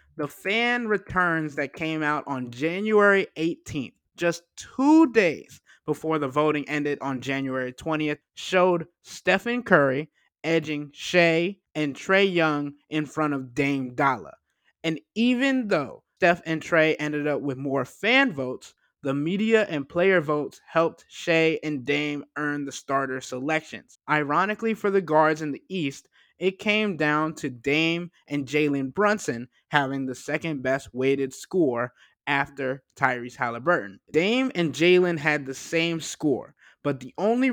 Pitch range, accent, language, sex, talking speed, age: 140-175 Hz, American, English, male, 145 wpm, 20-39